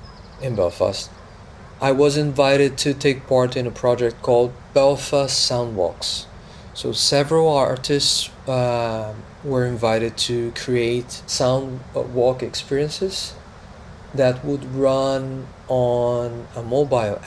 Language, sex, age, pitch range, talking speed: English, male, 40-59, 115-140 Hz, 110 wpm